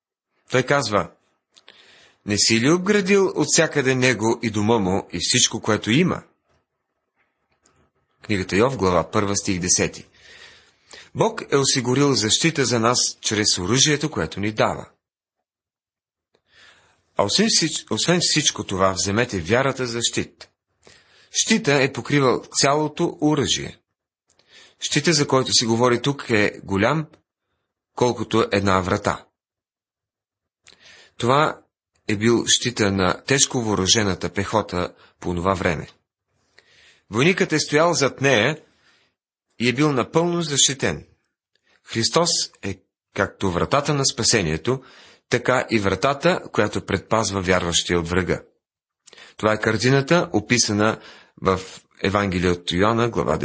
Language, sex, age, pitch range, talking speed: Bulgarian, male, 40-59, 100-140 Hz, 115 wpm